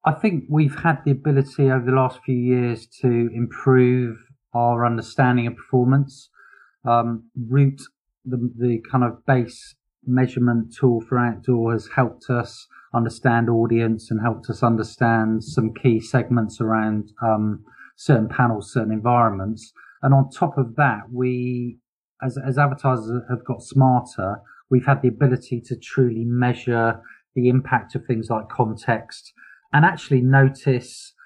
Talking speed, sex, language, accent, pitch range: 140 wpm, male, English, British, 115-130 Hz